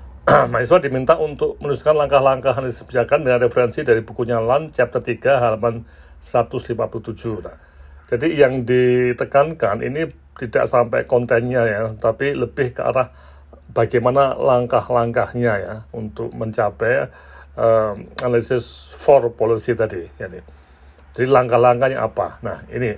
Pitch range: 95-125 Hz